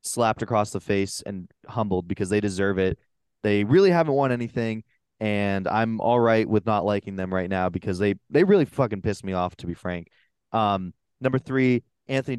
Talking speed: 195 wpm